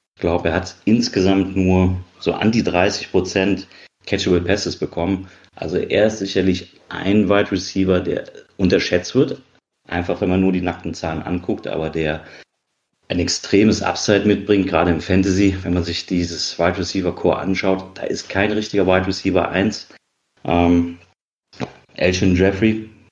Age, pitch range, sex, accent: 40-59, 90-105 Hz, male, German